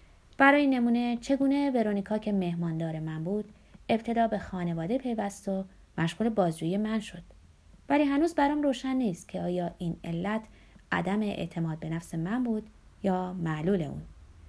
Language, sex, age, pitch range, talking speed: Persian, female, 30-49, 180-240 Hz, 145 wpm